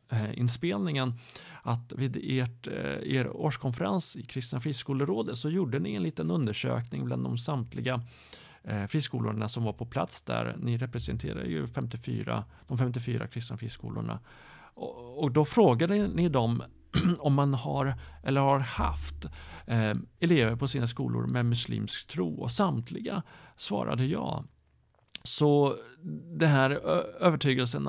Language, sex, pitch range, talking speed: Swedish, male, 115-150 Hz, 125 wpm